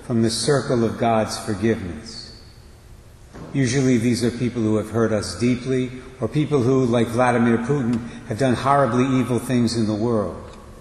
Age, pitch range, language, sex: 60-79, 110-125 Hz, English, male